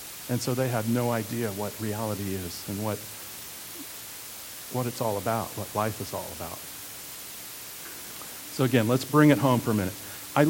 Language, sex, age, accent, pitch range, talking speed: English, male, 50-69, American, 120-150 Hz, 170 wpm